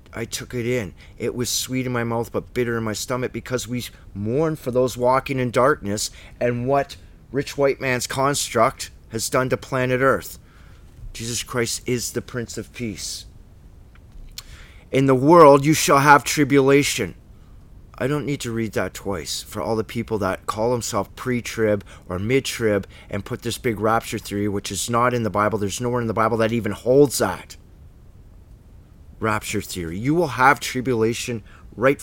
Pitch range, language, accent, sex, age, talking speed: 105-135 Hz, English, American, male, 30-49, 175 wpm